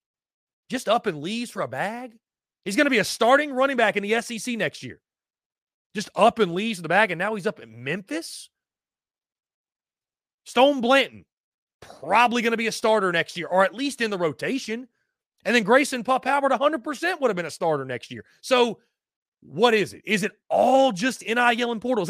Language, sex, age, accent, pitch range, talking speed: English, male, 30-49, American, 180-255 Hz, 200 wpm